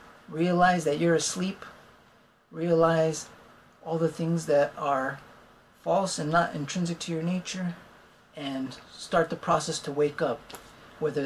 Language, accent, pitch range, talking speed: English, American, 145-170 Hz, 135 wpm